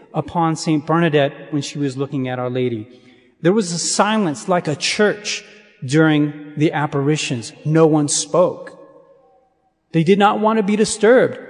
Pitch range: 140-175 Hz